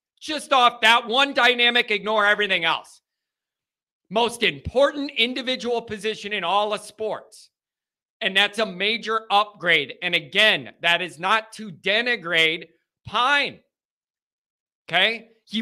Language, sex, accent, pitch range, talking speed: English, male, American, 175-230 Hz, 120 wpm